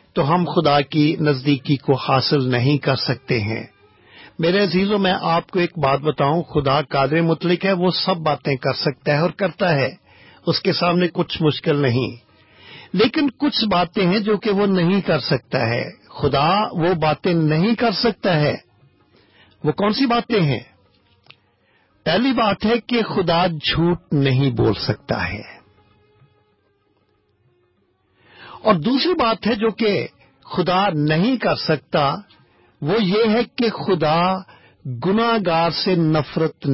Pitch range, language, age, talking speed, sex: 125-180 Hz, English, 50-69, 140 wpm, male